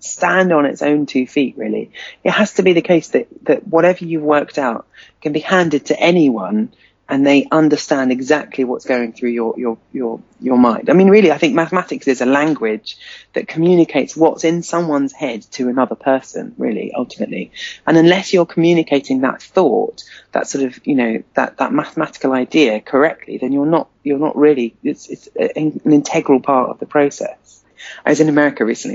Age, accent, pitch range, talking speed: 30-49, British, 130-170 Hz, 190 wpm